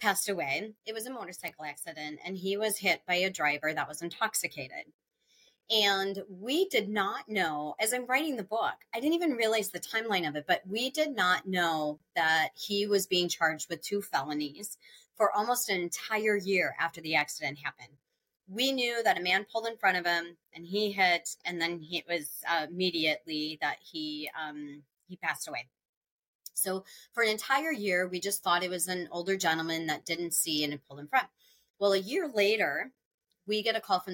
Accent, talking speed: American, 195 wpm